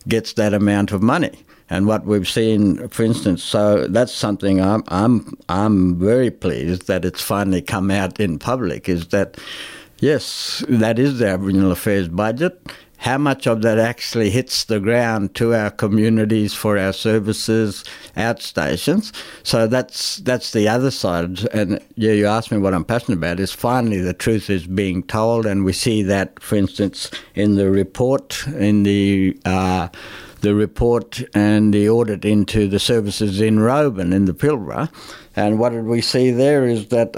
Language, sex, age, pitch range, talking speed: English, male, 60-79, 100-120 Hz, 170 wpm